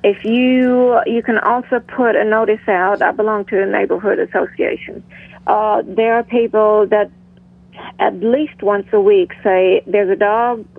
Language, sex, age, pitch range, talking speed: English, female, 40-59, 195-230 Hz, 160 wpm